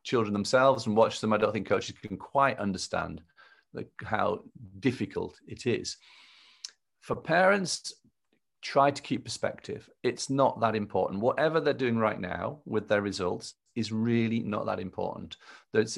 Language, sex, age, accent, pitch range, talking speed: English, male, 40-59, British, 105-140 Hz, 155 wpm